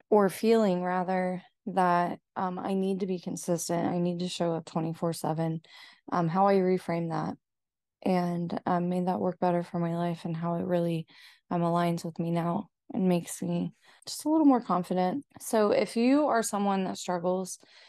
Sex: female